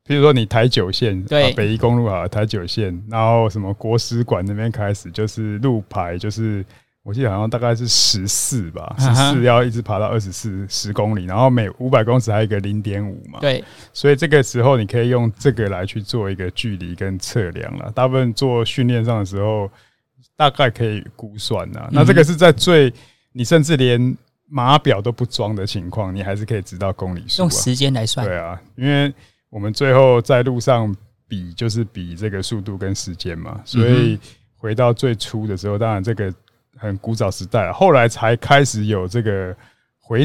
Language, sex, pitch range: Chinese, male, 105-125 Hz